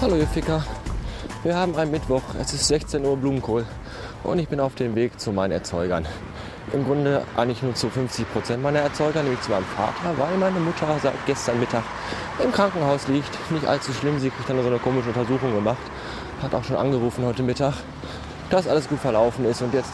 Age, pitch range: 20-39, 105-135 Hz